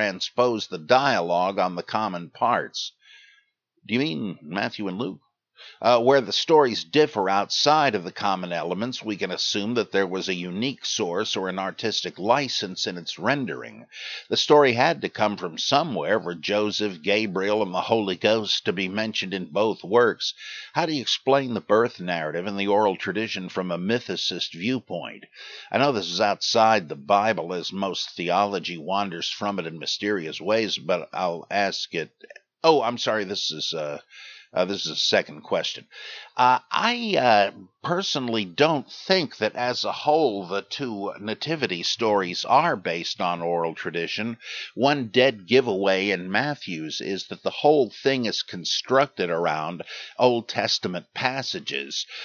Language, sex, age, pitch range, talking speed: English, male, 60-79, 95-130 Hz, 160 wpm